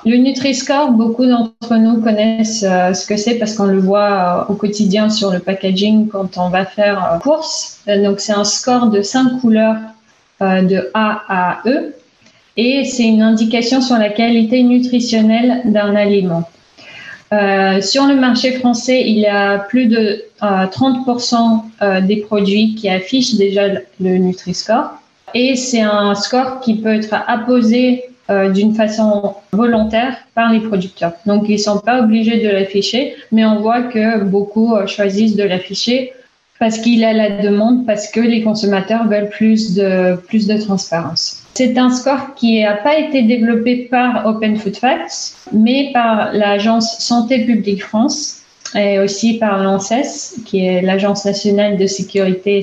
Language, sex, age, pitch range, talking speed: French, female, 30-49, 200-235 Hz, 155 wpm